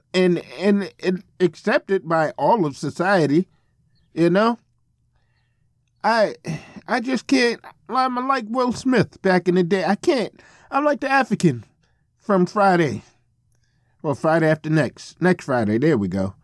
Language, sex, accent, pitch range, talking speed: English, male, American, 135-200 Hz, 140 wpm